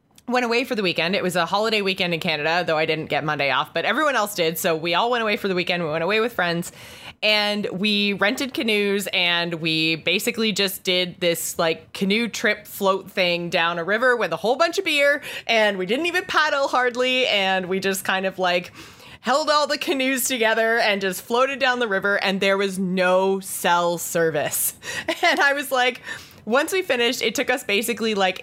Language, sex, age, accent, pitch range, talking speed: English, female, 20-39, American, 175-235 Hz, 210 wpm